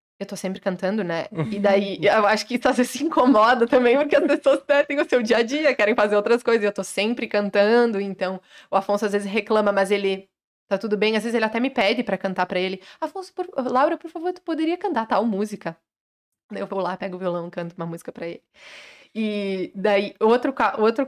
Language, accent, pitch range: Portuguese, Brazilian, 195-245 Hz